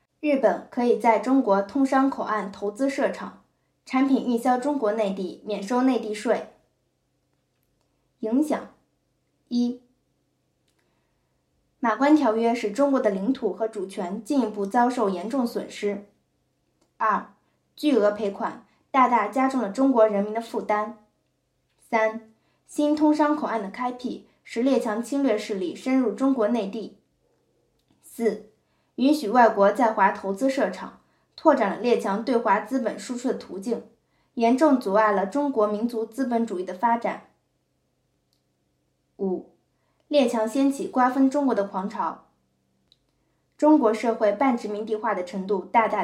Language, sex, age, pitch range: Chinese, female, 10-29, 205-260 Hz